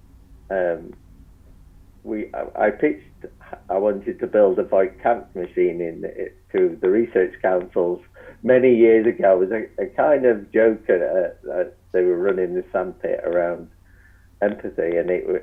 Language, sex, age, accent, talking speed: English, male, 50-69, British, 145 wpm